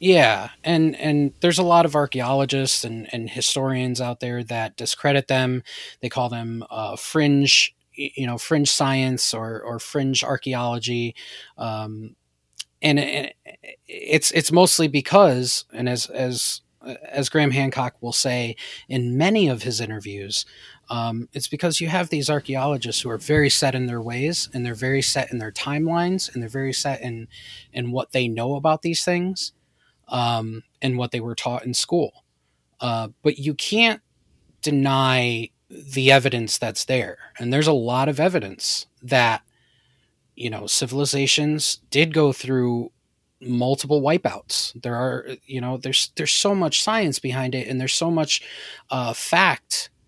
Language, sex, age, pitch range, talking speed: English, male, 20-39, 120-150 Hz, 155 wpm